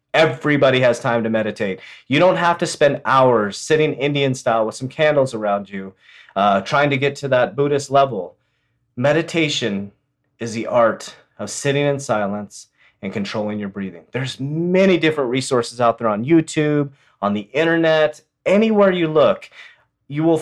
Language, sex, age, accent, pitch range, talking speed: English, male, 30-49, American, 115-155 Hz, 160 wpm